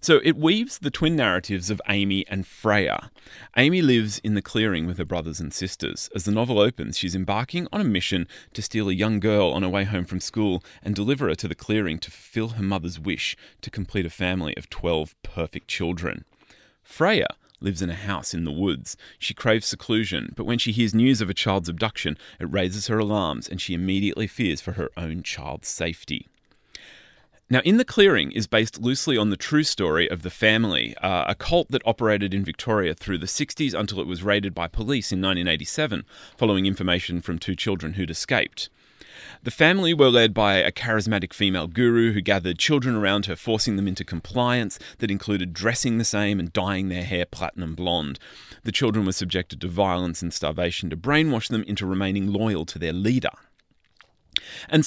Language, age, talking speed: English, 30-49, 195 wpm